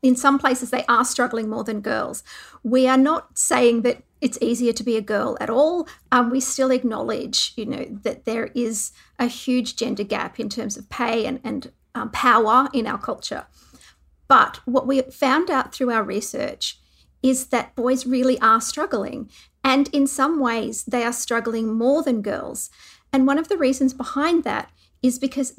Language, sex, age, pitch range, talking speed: English, female, 50-69, 230-270 Hz, 185 wpm